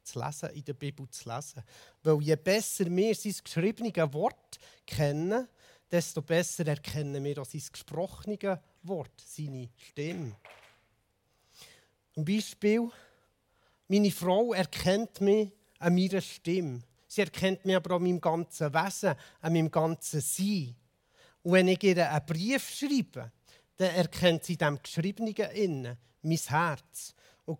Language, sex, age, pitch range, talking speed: German, male, 40-59, 135-185 Hz, 130 wpm